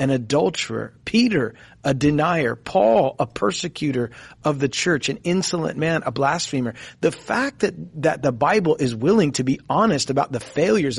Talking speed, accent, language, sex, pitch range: 165 wpm, American, English, male, 130-170 Hz